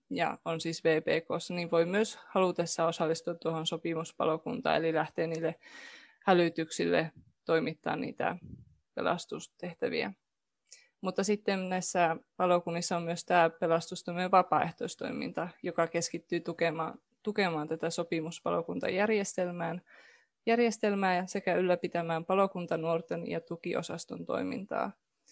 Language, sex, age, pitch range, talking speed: Finnish, female, 20-39, 165-195 Hz, 95 wpm